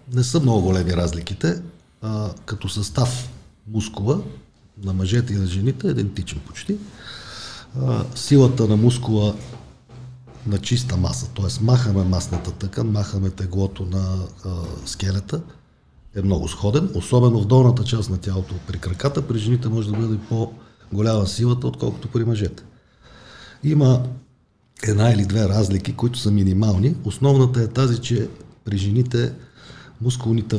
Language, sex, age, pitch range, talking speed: Bulgarian, male, 40-59, 95-125 Hz, 135 wpm